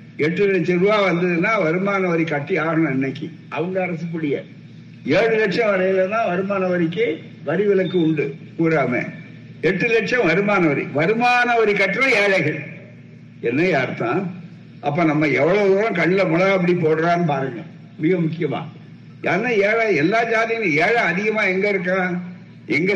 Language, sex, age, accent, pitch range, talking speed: Tamil, male, 60-79, native, 175-215 Hz, 130 wpm